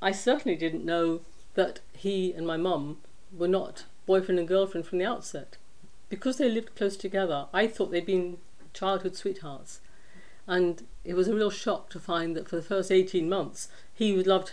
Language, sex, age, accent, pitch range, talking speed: English, female, 50-69, British, 165-195 Hz, 180 wpm